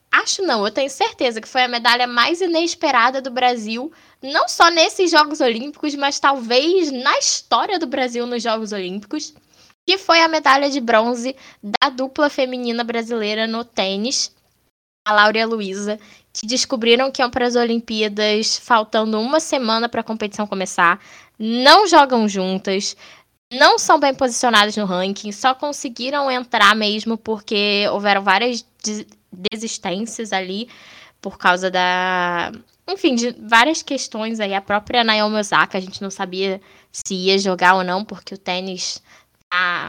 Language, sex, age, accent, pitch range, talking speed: Portuguese, female, 10-29, Brazilian, 205-275 Hz, 155 wpm